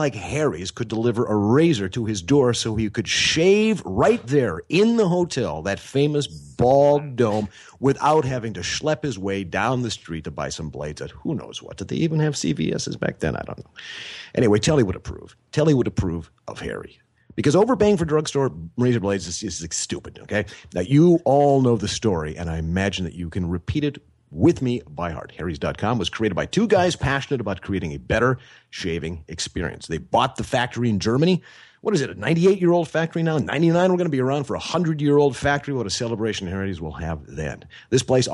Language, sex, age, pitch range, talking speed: English, male, 40-59, 90-145 Hz, 205 wpm